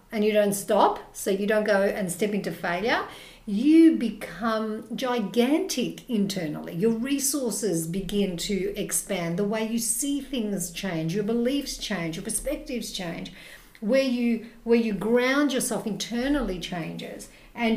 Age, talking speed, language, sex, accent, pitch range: 50-69, 140 wpm, English, female, Australian, 190-245 Hz